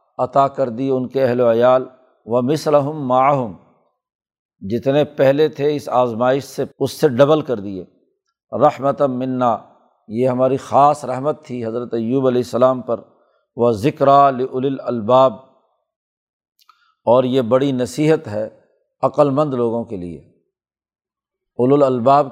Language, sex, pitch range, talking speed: Urdu, male, 125-145 Hz, 120 wpm